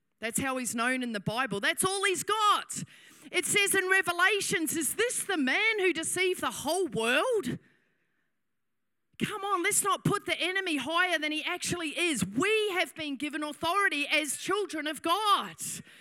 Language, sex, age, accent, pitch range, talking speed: English, female, 30-49, Australian, 285-370 Hz, 170 wpm